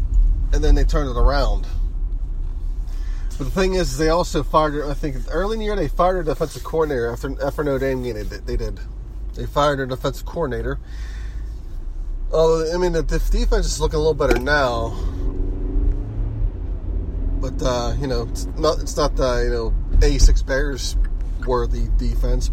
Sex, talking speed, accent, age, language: male, 170 wpm, American, 30-49, English